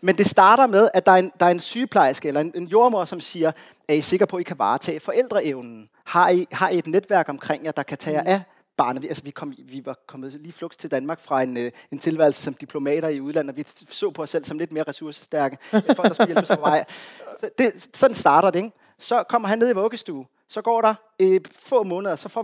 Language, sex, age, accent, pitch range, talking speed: Danish, male, 30-49, native, 150-190 Hz, 250 wpm